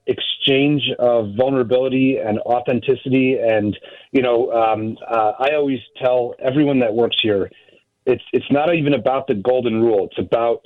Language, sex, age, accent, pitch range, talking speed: English, male, 40-59, American, 110-130 Hz, 150 wpm